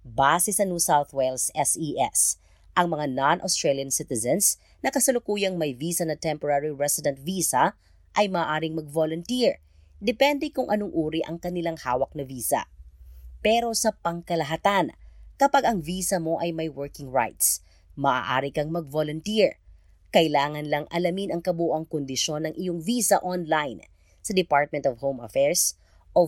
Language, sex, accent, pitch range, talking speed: Filipino, female, native, 145-195 Hz, 135 wpm